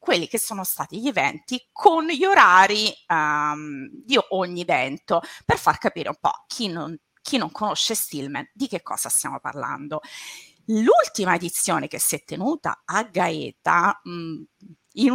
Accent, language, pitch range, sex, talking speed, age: native, Italian, 175-280 Hz, female, 150 wpm, 30-49